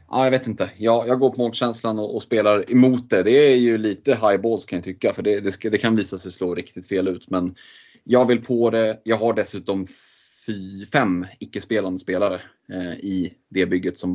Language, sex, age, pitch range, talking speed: Swedish, male, 30-49, 90-110 Hz, 215 wpm